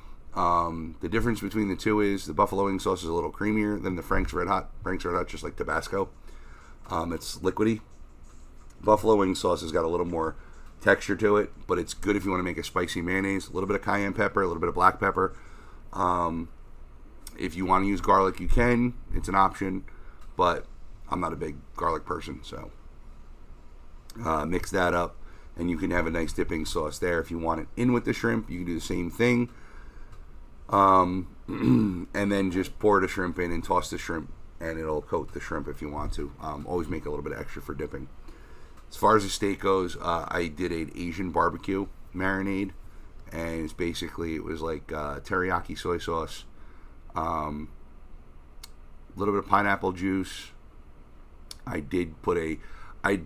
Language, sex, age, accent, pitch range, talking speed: English, male, 40-59, American, 75-100 Hz, 195 wpm